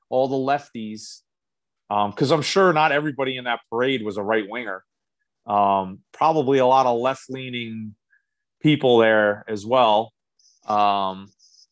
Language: English